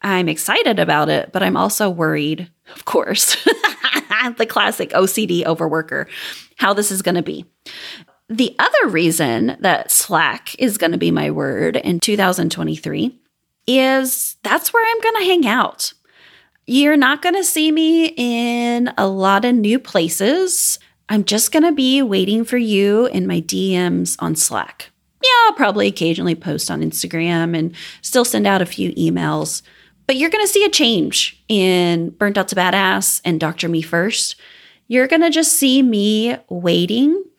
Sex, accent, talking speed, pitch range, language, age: female, American, 165 wpm, 175-275 Hz, English, 30-49